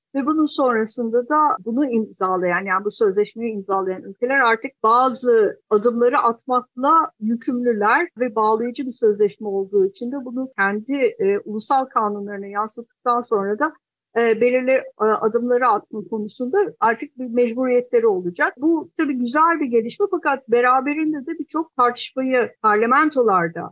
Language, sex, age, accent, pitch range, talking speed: Turkish, female, 50-69, native, 220-285 Hz, 125 wpm